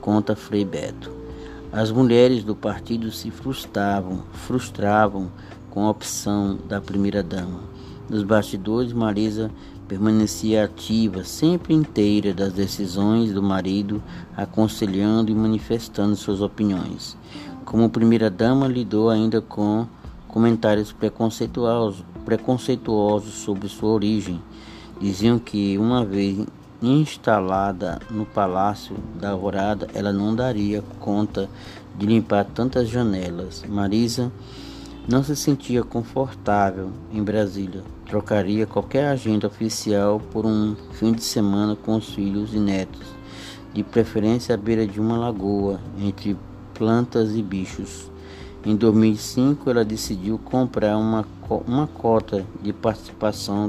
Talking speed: 115 wpm